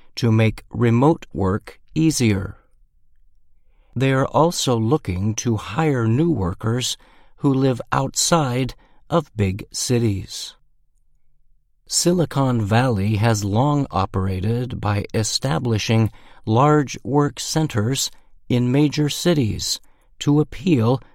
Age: 60-79